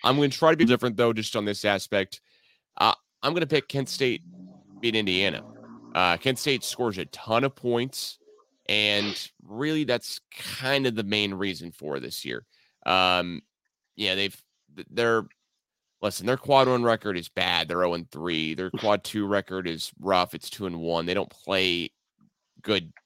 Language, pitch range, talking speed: English, 95-125 Hz, 175 wpm